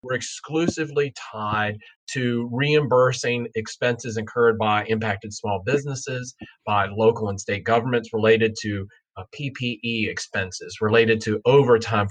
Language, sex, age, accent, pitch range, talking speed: English, male, 30-49, American, 110-140 Hz, 120 wpm